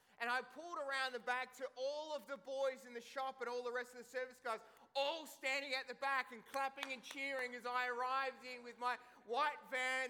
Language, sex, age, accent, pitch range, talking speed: English, male, 30-49, Australian, 210-255 Hz, 230 wpm